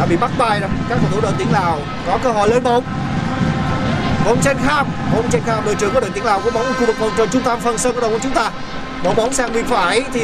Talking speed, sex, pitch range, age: 310 wpm, male, 205-255 Hz, 20-39